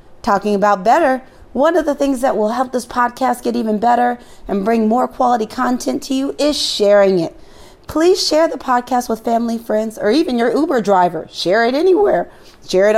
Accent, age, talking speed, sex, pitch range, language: American, 30-49, 195 wpm, female, 210-275 Hz, English